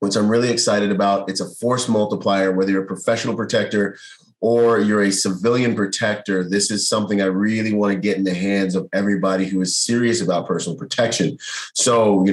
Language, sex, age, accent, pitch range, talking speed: English, male, 30-49, American, 95-115 Hz, 195 wpm